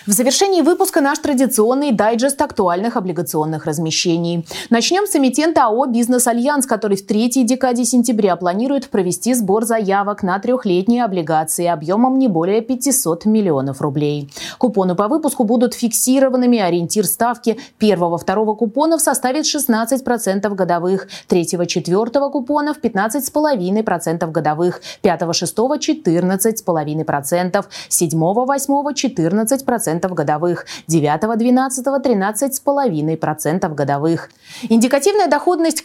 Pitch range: 180-260 Hz